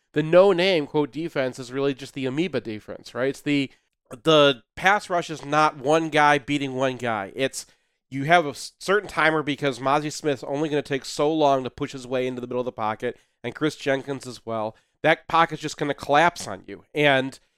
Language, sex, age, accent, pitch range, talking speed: English, male, 40-59, American, 130-165 Hz, 210 wpm